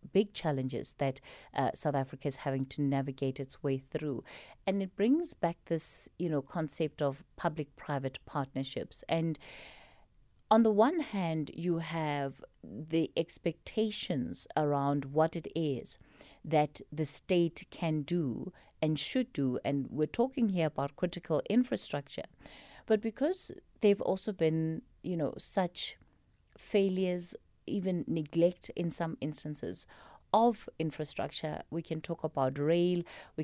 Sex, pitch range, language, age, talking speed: female, 155-190 Hz, English, 30-49, 135 wpm